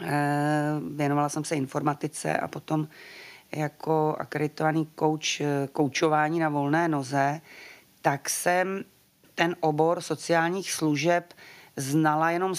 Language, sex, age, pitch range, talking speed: Czech, female, 30-49, 145-160 Hz, 100 wpm